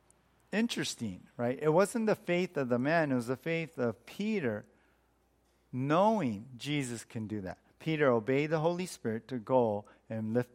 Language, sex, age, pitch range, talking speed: English, male, 50-69, 115-165 Hz, 165 wpm